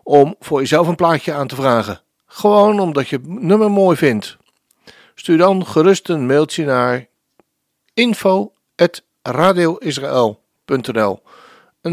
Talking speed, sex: 115 wpm, male